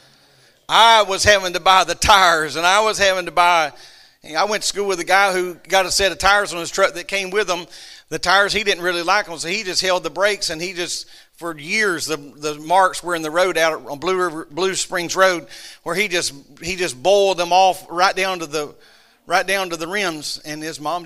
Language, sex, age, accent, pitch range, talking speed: English, male, 50-69, American, 180-215 Hz, 240 wpm